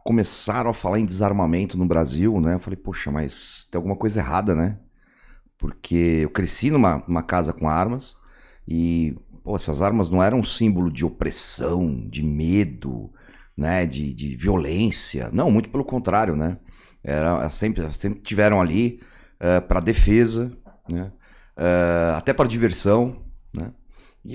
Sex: male